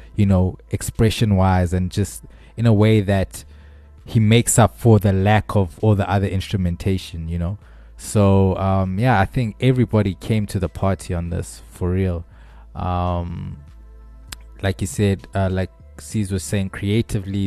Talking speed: 160 wpm